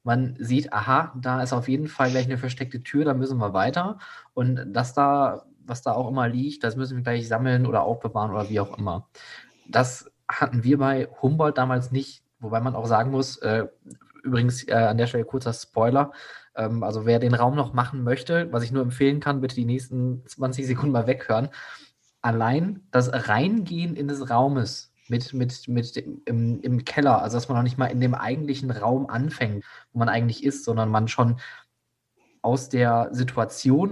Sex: male